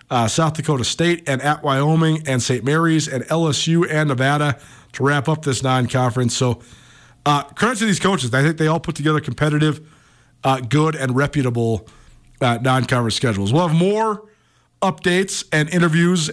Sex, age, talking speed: male, 40-59, 160 wpm